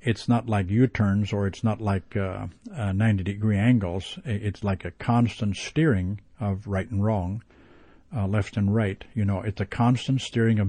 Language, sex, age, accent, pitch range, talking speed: English, male, 50-69, American, 100-120 Hz, 180 wpm